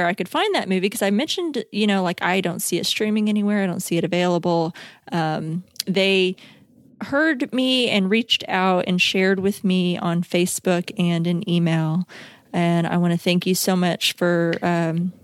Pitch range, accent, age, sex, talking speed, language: 170-205 Hz, American, 20-39, female, 190 wpm, English